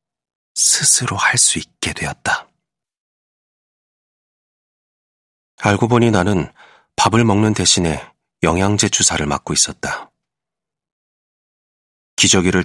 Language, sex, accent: Korean, male, native